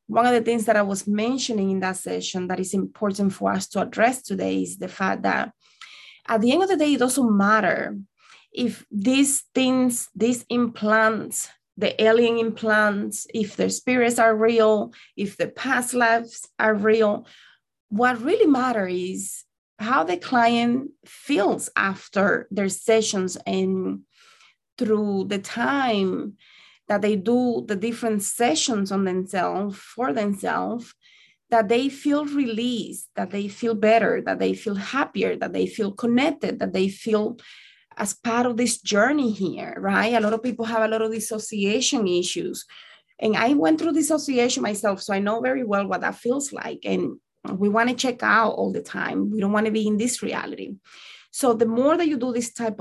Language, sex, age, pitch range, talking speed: English, female, 20-39, 200-245 Hz, 170 wpm